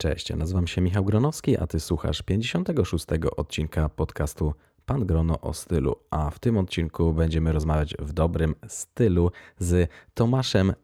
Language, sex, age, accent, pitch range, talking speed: Polish, male, 20-39, native, 80-95 Hz, 150 wpm